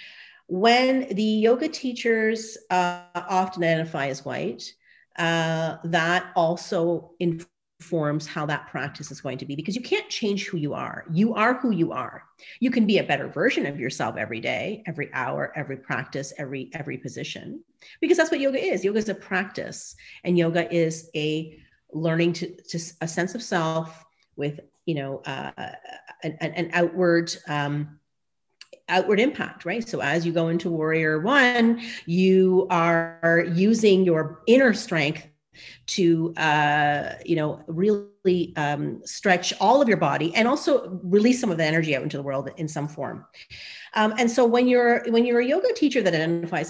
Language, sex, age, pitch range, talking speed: English, female, 40-59, 160-220 Hz, 170 wpm